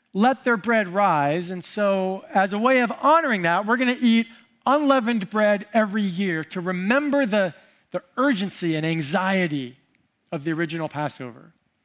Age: 40-59